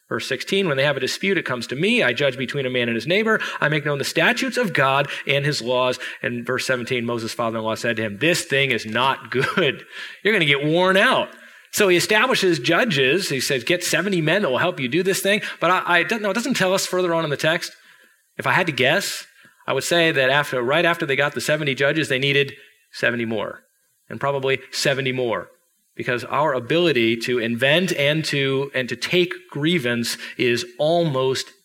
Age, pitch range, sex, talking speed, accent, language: 30-49, 125-170 Hz, male, 220 wpm, American, English